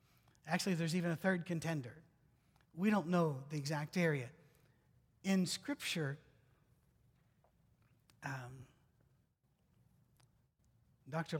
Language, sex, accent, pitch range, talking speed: English, male, American, 130-175 Hz, 85 wpm